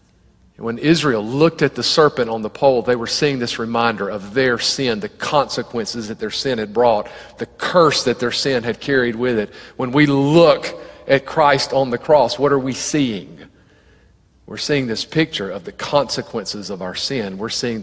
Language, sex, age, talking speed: English, male, 40-59, 190 wpm